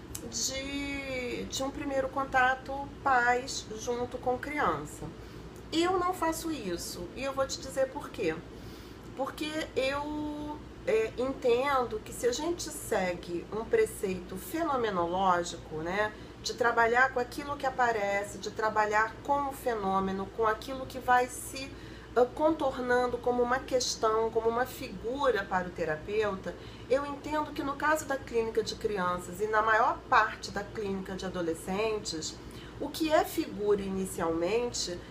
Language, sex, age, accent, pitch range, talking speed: Portuguese, female, 40-59, Brazilian, 205-275 Hz, 135 wpm